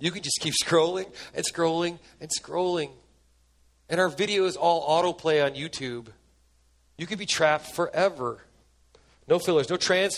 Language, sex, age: English, male, 40-59